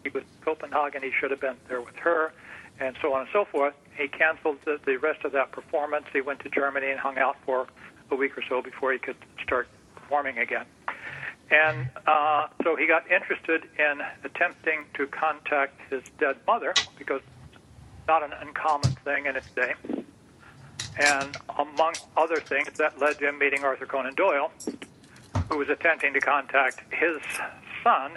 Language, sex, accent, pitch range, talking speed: English, male, American, 135-155 Hz, 175 wpm